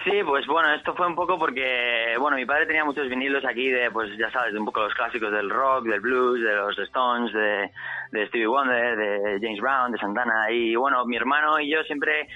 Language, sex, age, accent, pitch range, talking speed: Spanish, male, 20-39, Spanish, 115-145 Hz, 230 wpm